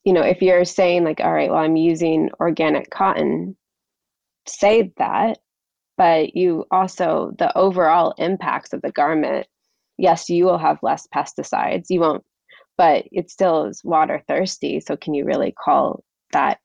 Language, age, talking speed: English, 20-39, 160 wpm